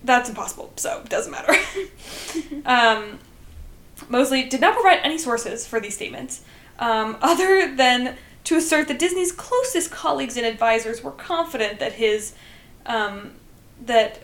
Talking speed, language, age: 130 wpm, English, 10-29